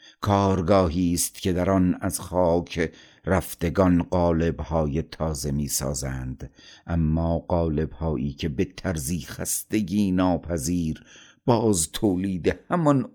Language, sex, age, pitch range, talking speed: Persian, male, 50-69, 75-95 Hz, 100 wpm